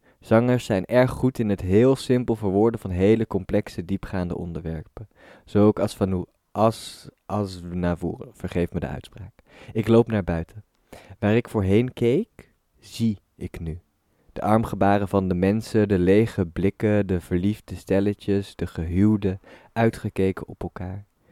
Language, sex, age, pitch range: Dutch, male, 20-39, 90-115 Hz